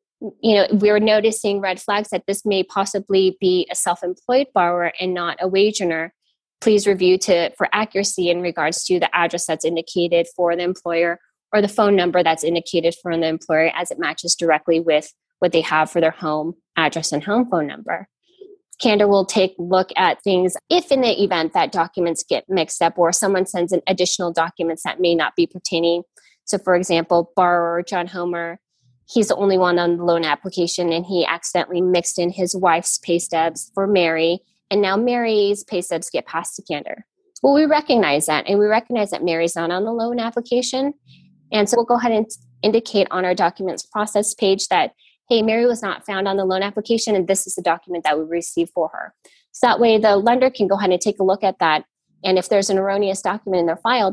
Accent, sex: American, female